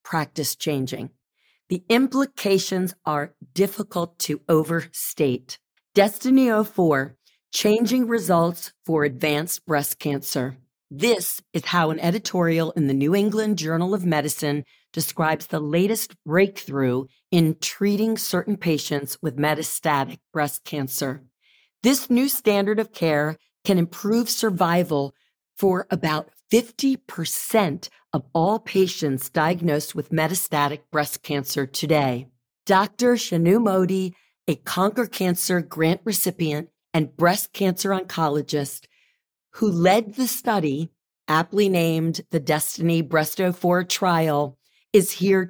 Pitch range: 150-195 Hz